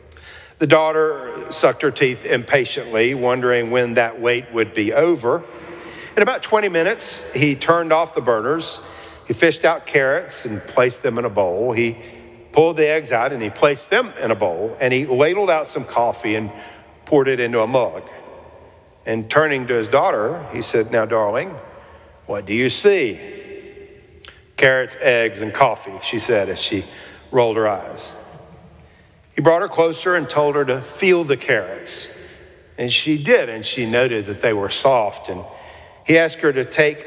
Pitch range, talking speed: 115-160 Hz, 175 wpm